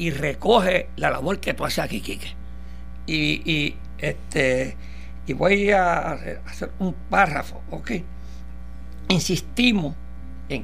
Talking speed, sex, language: 120 wpm, male, Spanish